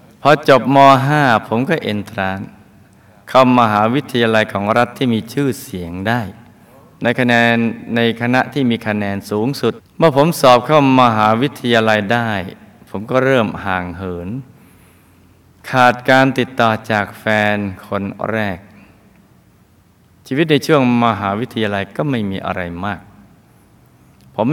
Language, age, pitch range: Thai, 20-39, 100-125 Hz